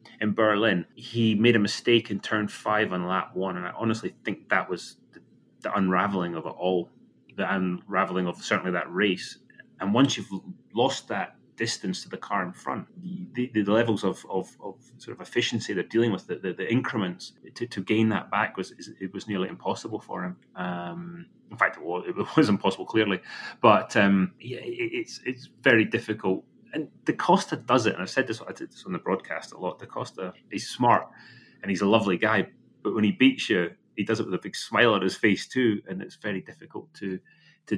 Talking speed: 215 wpm